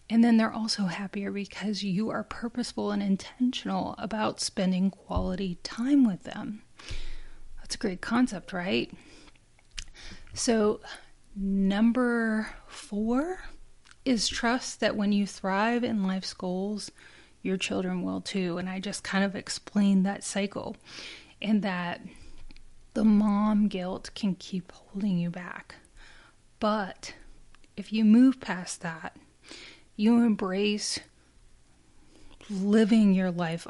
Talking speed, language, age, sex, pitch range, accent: 120 wpm, English, 30-49, female, 190-220 Hz, American